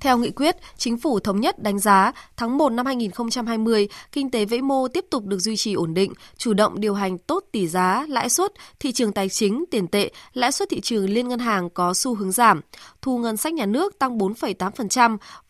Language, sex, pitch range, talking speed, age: Vietnamese, female, 200-260 Hz, 220 wpm, 20-39